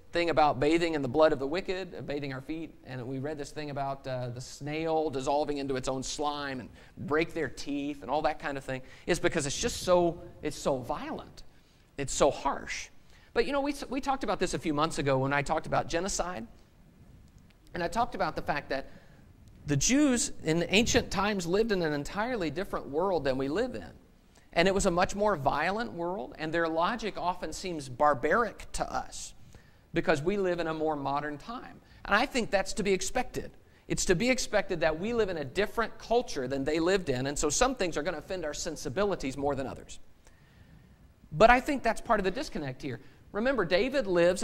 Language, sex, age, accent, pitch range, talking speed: English, male, 40-59, American, 145-225 Hz, 210 wpm